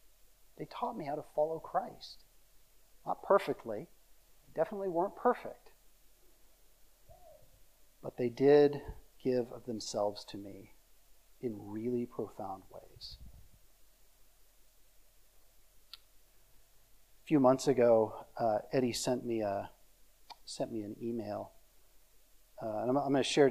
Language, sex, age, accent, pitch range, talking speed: English, male, 40-59, American, 115-140 Hz, 115 wpm